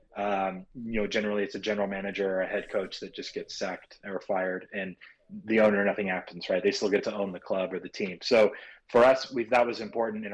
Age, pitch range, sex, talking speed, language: 30-49, 95-110 Hz, male, 245 wpm, English